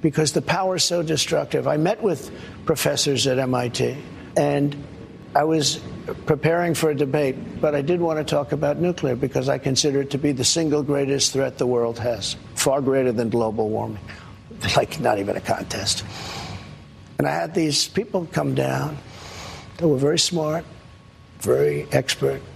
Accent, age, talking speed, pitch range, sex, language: American, 60-79, 170 wpm, 120-155 Hz, male, English